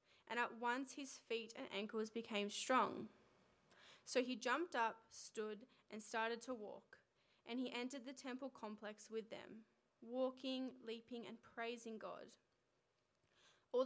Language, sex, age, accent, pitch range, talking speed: English, female, 10-29, Australian, 215-250 Hz, 140 wpm